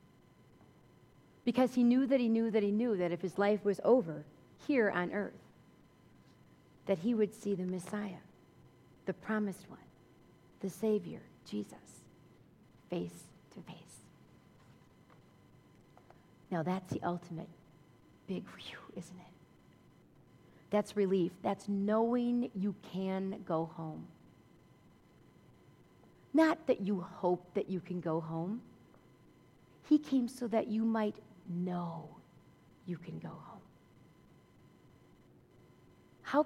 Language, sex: English, female